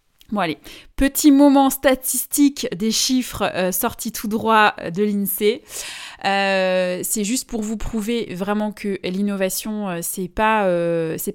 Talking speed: 125 wpm